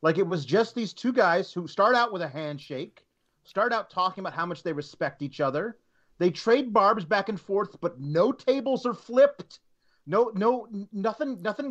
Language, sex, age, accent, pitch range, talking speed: English, male, 30-49, American, 145-215 Hz, 195 wpm